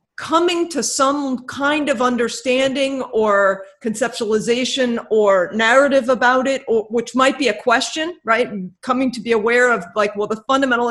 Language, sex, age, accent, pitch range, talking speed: English, female, 40-59, American, 205-255 Hz, 155 wpm